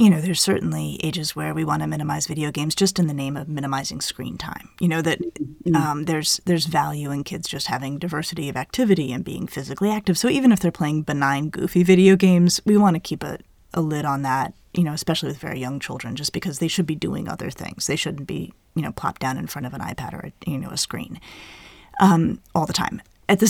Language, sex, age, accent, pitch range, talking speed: English, female, 30-49, American, 155-195 Hz, 245 wpm